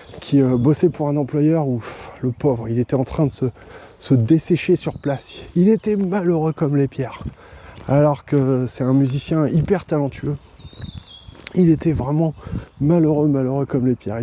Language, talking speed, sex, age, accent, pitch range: French, 170 wpm, male, 20-39, French, 120-160 Hz